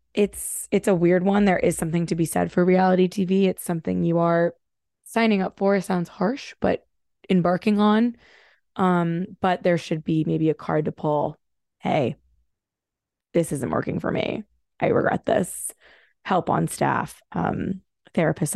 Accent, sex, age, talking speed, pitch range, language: American, female, 20-39, 165 wpm, 160-200 Hz, English